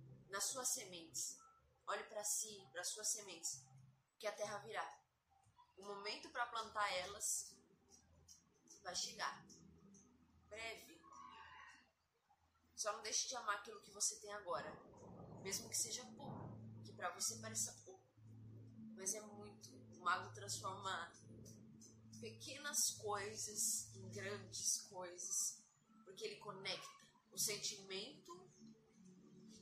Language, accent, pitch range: Portuguese, Brazilian, 130-210 Hz